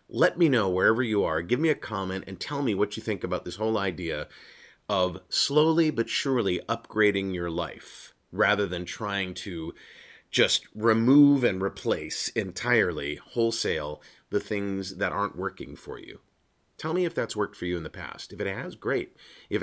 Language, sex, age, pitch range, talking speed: English, male, 30-49, 95-125 Hz, 180 wpm